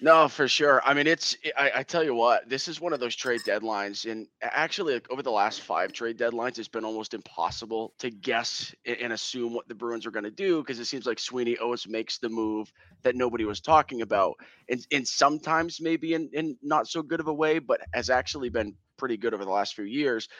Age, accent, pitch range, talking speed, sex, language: 30-49, American, 115-155 Hz, 230 wpm, male, English